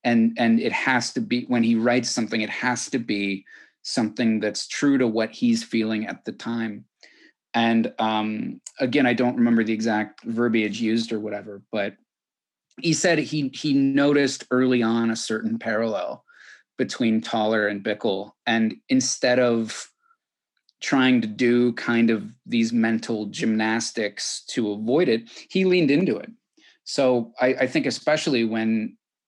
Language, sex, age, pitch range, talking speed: English, male, 30-49, 110-125 Hz, 155 wpm